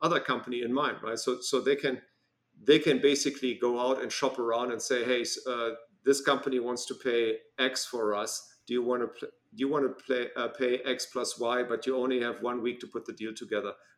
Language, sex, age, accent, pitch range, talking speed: English, male, 50-69, German, 115-130 Hz, 235 wpm